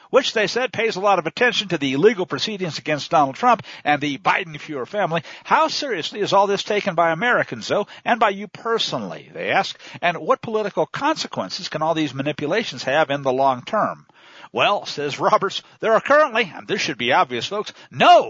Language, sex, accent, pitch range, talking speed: English, male, American, 155-220 Hz, 195 wpm